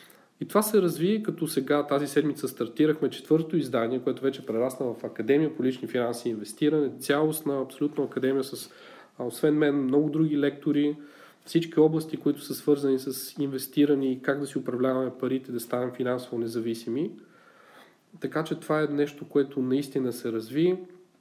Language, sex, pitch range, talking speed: Bulgarian, male, 130-155 Hz, 160 wpm